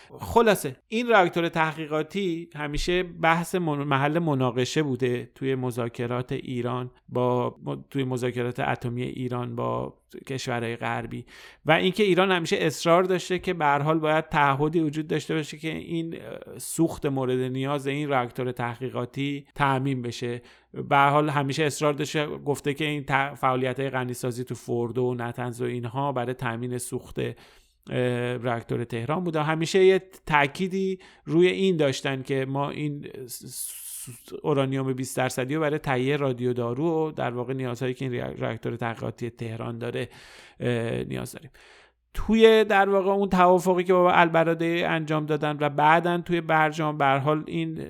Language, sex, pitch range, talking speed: Persian, male, 125-155 Hz, 145 wpm